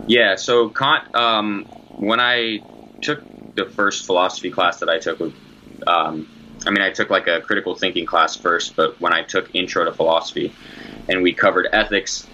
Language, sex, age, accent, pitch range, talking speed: English, male, 20-39, American, 85-110 Hz, 175 wpm